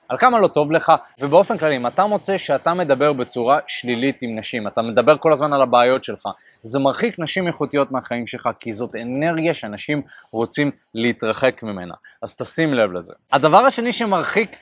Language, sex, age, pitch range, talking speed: Hebrew, male, 20-39, 130-180 Hz, 175 wpm